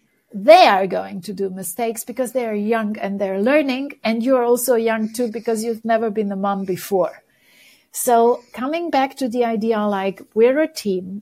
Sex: female